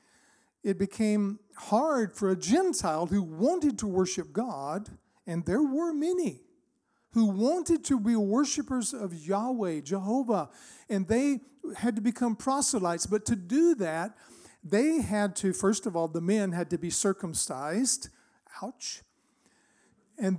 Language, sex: Danish, male